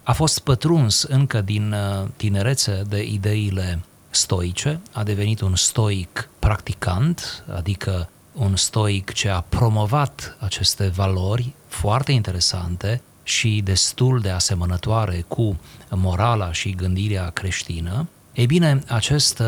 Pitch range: 95-120 Hz